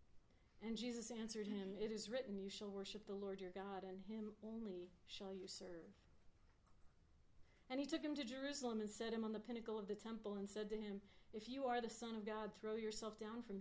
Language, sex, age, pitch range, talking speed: English, female, 40-59, 180-225 Hz, 220 wpm